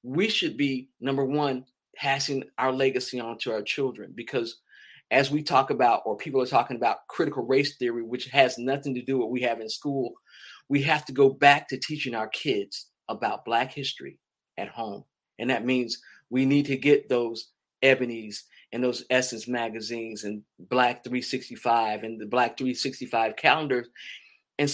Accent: American